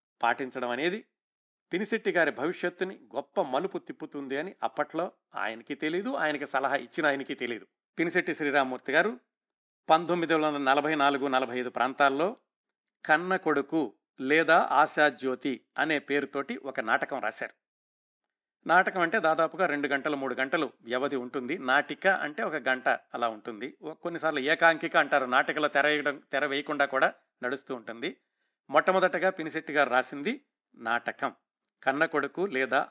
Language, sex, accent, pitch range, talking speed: Telugu, male, native, 135-175 Hz, 110 wpm